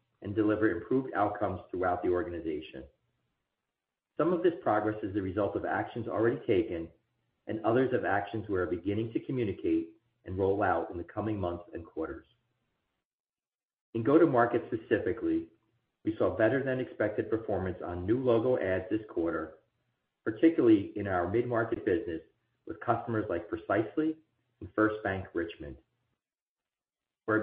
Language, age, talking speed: English, 40-59, 150 wpm